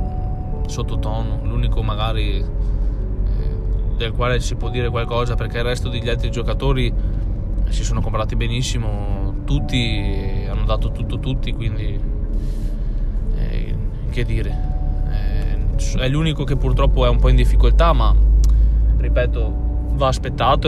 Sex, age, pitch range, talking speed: male, 20-39, 100-120 Hz, 120 wpm